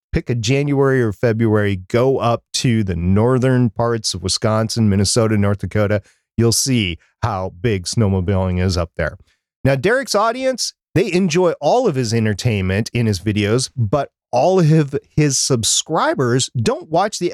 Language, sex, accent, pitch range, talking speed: English, male, American, 105-155 Hz, 150 wpm